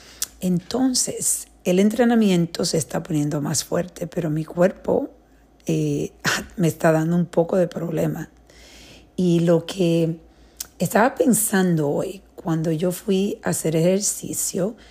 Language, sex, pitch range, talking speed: Spanish, female, 160-190 Hz, 125 wpm